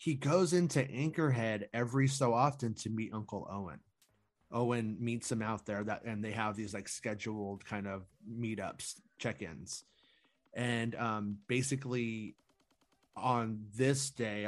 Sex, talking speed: male, 135 wpm